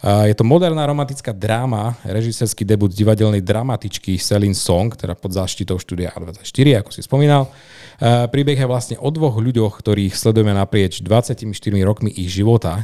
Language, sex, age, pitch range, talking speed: Slovak, male, 30-49, 100-120 Hz, 150 wpm